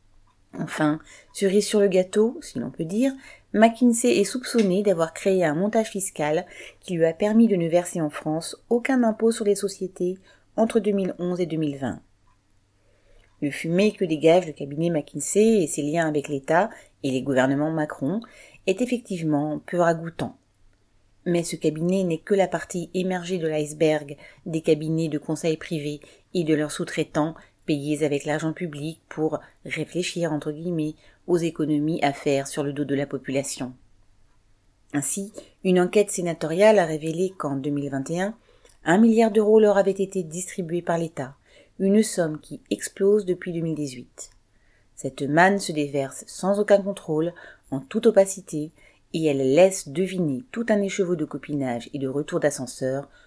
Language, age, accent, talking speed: French, 30-49, French, 160 wpm